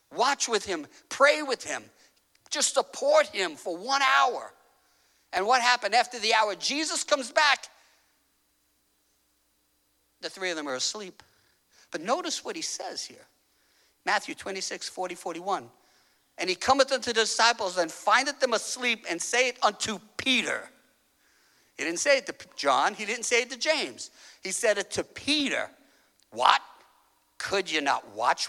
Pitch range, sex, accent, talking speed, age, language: 185-290 Hz, male, American, 155 wpm, 50-69, English